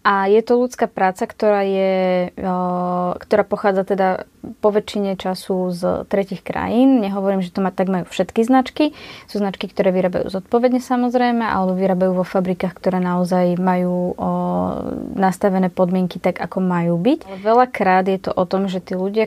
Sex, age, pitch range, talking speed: female, 20-39, 185-210 Hz, 160 wpm